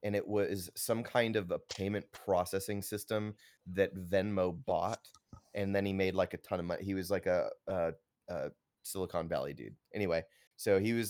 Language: English